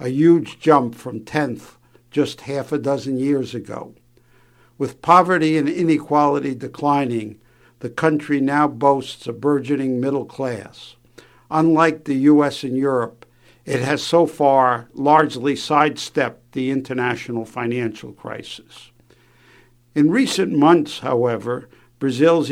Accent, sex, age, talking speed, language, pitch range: American, male, 60-79, 115 wpm, English, 125-150 Hz